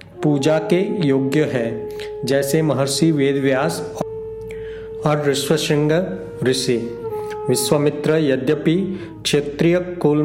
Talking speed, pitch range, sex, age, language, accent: 90 wpm, 135-165 Hz, male, 50-69, Hindi, native